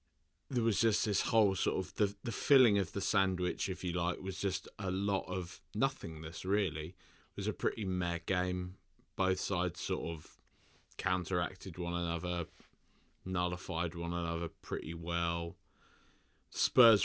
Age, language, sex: 20-39, English, male